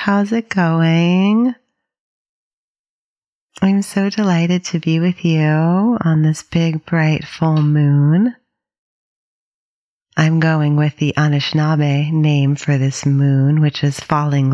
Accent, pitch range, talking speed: American, 140-170 Hz, 115 wpm